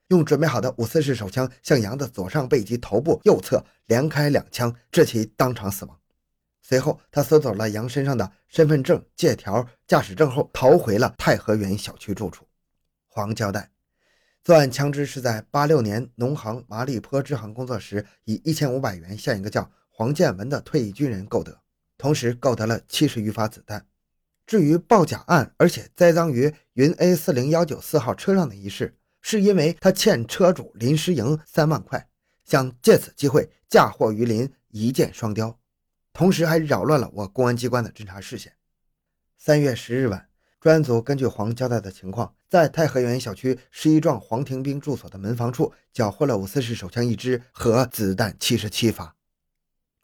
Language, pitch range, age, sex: Chinese, 105-145 Hz, 20-39, male